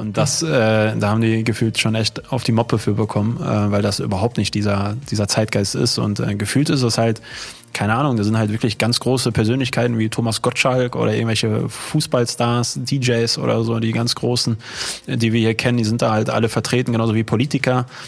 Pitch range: 110-125 Hz